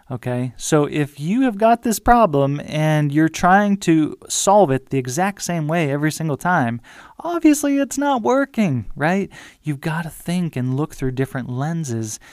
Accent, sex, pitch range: American, male, 130-175 Hz